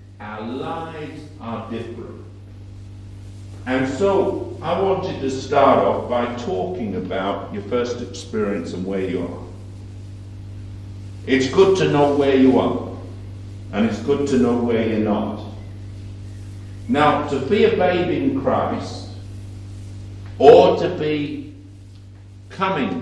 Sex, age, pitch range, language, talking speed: male, 60-79, 100-125 Hz, English, 125 wpm